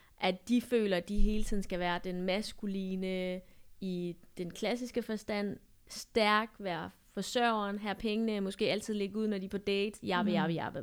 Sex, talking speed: female, 165 wpm